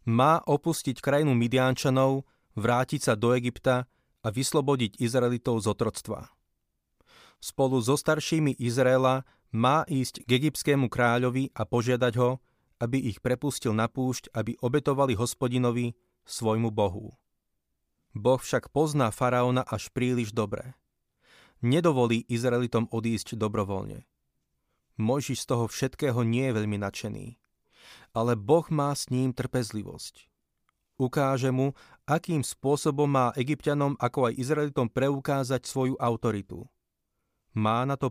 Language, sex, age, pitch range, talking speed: Slovak, male, 30-49, 115-135 Hz, 120 wpm